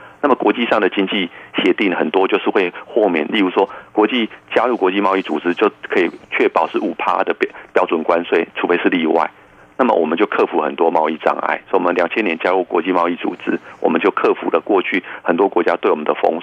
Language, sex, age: Chinese, male, 30-49